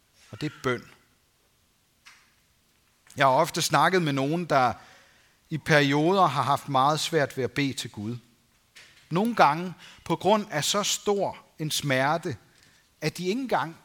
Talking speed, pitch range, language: 150 wpm, 120-175 Hz, Danish